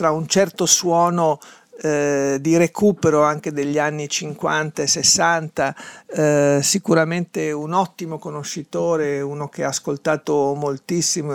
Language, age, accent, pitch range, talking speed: Italian, 50-69, native, 155-190 Hz, 115 wpm